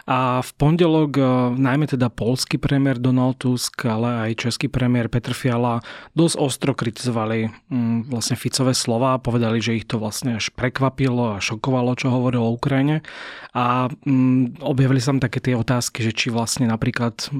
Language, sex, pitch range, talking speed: Slovak, male, 115-130 Hz, 160 wpm